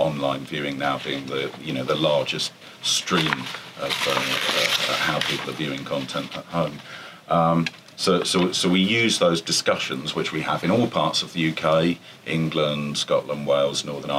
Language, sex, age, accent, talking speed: English, male, 40-59, British, 160 wpm